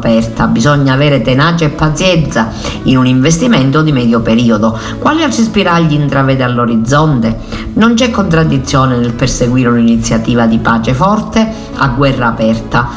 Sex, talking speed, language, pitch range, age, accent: female, 135 wpm, Italian, 120-165 Hz, 50-69, native